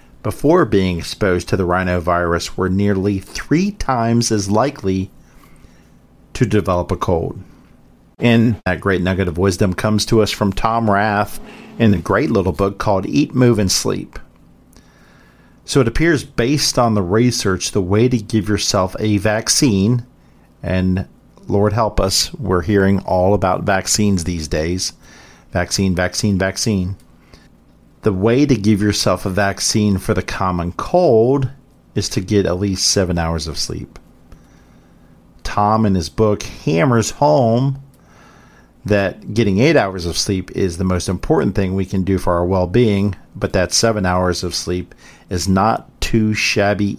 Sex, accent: male, American